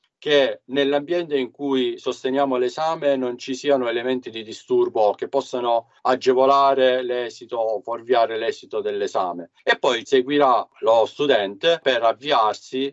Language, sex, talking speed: Italian, male, 125 wpm